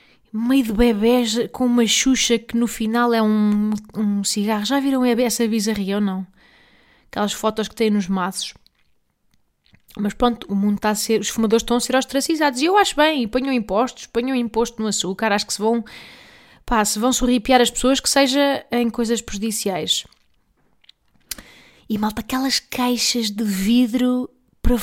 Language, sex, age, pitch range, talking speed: Portuguese, female, 20-39, 225-290 Hz, 170 wpm